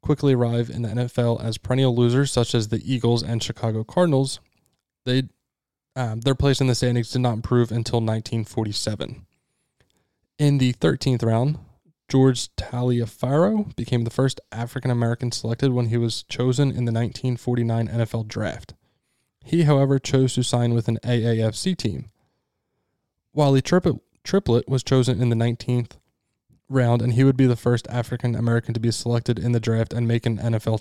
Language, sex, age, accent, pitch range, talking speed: English, male, 10-29, American, 115-135 Hz, 165 wpm